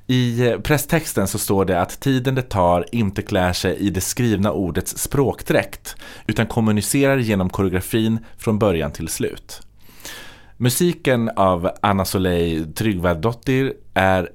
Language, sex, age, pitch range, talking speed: Swedish, male, 30-49, 95-115 Hz, 130 wpm